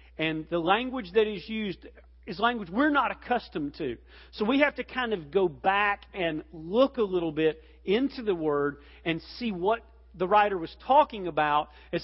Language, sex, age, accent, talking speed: English, male, 40-59, American, 185 wpm